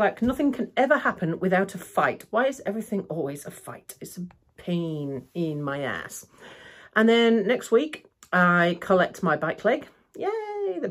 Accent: British